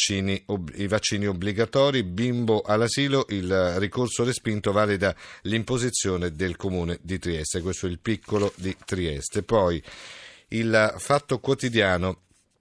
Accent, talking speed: native, 115 wpm